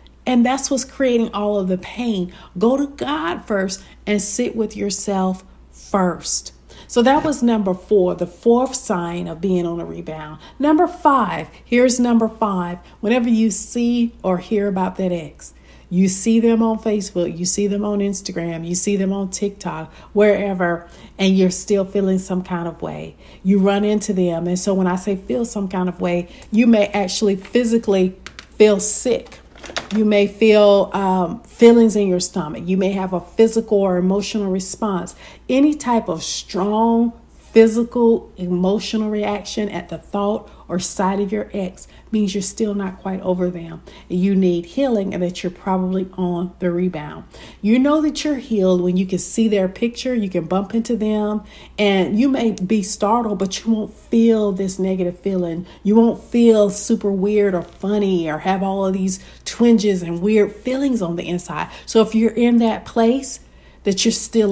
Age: 50-69